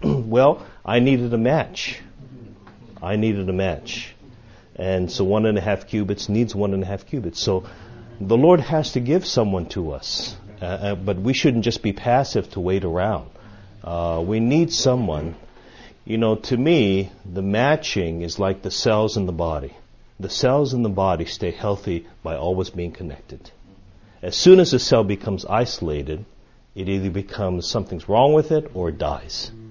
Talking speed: 175 wpm